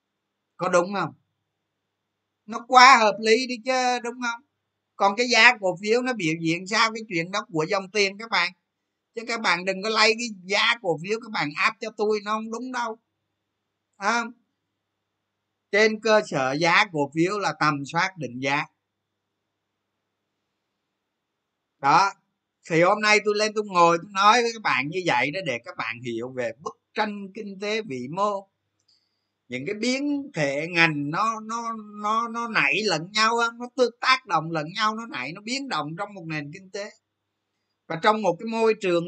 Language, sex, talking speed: Vietnamese, male, 185 wpm